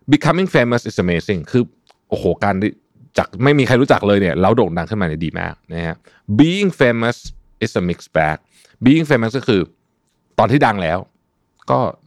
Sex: male